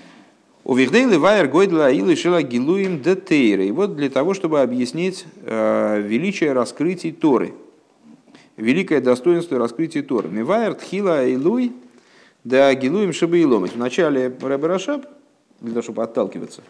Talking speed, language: 85 wpm, Russian